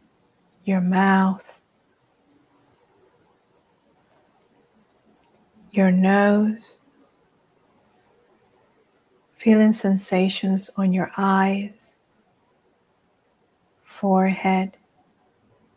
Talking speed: 40 wpm